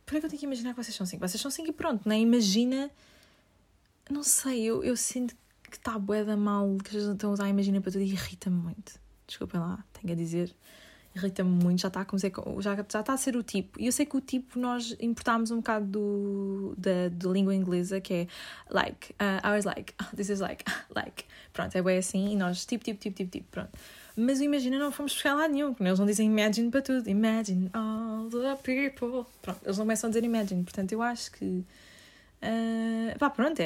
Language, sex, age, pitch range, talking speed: Portuguese, female, 20-39, 190-230 Hz, 235 wpm